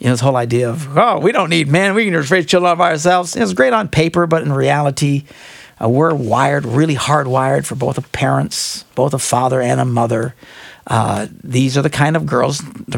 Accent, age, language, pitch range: American, 50-69, English, 125-170 Hz